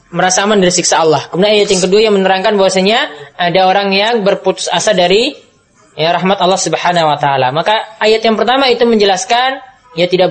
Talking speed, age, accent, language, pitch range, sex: 185 wpm, 20-39, native, Indonesian, 175-240 Hz, female